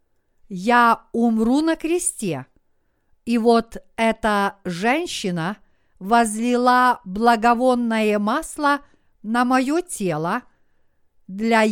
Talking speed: 75 wpm